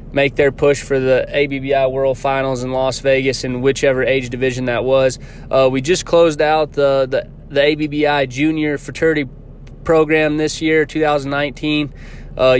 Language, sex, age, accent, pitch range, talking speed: English, male, 20-39, American, 135-150 Hz, 150 wpm